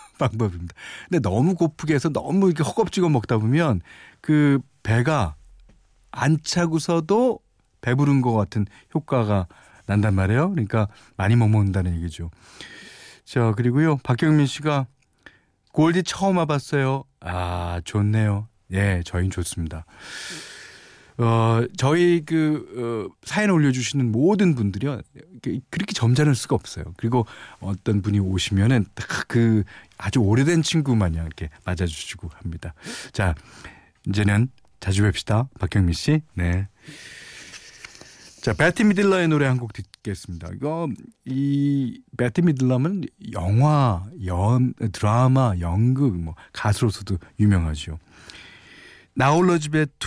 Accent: native